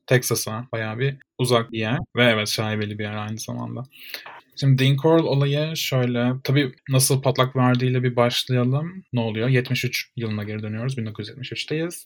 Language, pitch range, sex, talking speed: Turkish, 115-140 Hz, male, 155 wpm